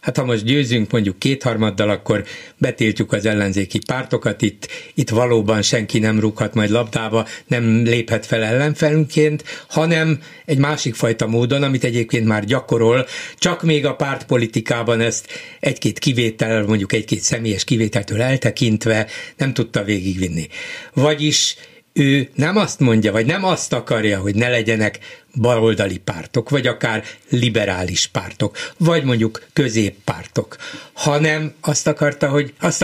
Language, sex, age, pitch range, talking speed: Hungarian, male, 60-79, 120-160 Hz, 130 wpm